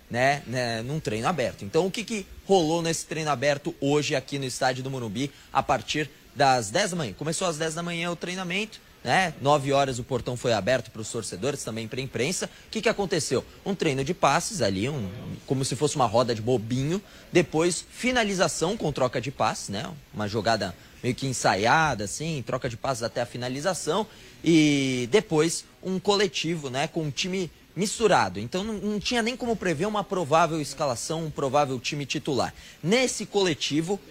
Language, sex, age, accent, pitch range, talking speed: Portuguese, male, 20-39, Brazilian, 130-185 Hz, 190 wpm